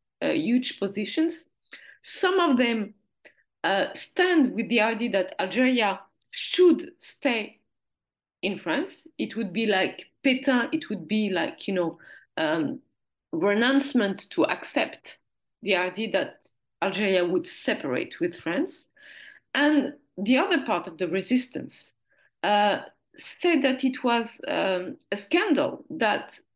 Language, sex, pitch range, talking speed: English, female, 205-290 Hz, 125 wpm